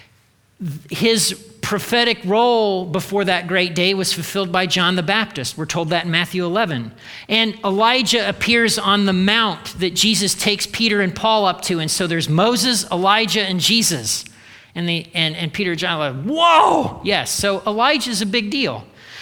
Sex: male